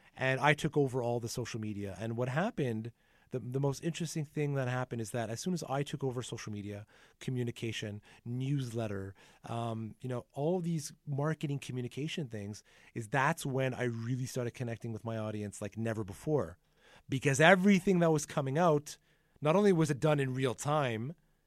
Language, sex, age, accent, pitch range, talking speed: English, male, 30-49, American, 115-150 Hz, 185 wpm